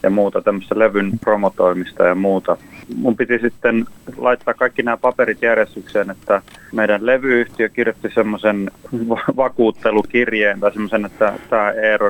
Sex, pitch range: male, 105-120 Hz